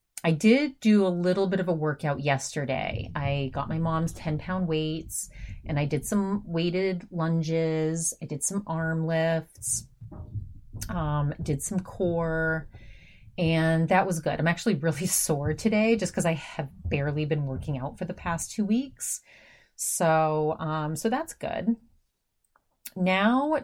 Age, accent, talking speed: 30-49, American, 150 wpm